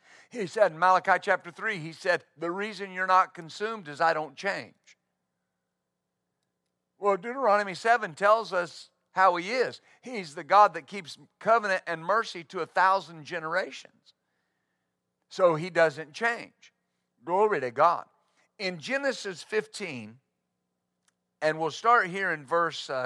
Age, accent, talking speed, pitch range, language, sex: 50-69, American, 140 wpm, 145-210 Hz, English, male